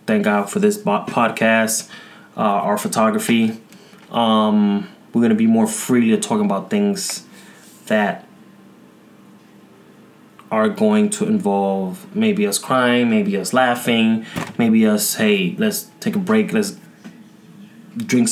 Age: 20-39